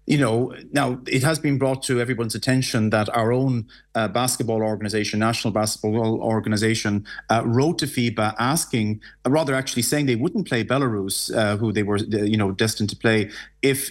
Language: English